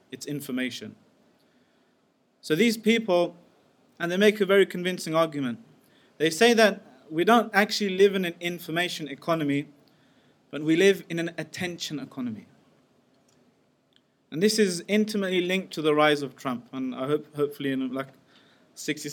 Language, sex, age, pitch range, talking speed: English, male, 20-39, 135-175 Hz, 145 wpm